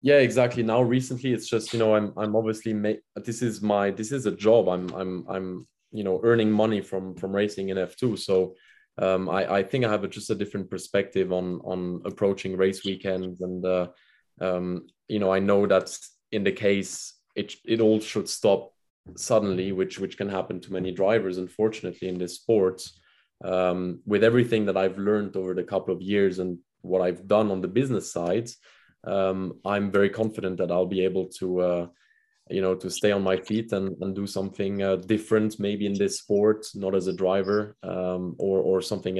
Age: 20-39